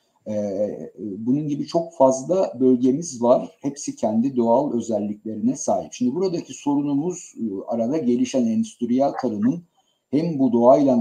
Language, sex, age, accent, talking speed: Turkish, male, 60-79, native, 120 wpm